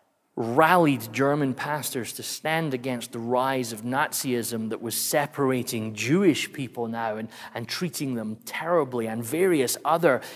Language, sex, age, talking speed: English, male, 30-49, 140 wpm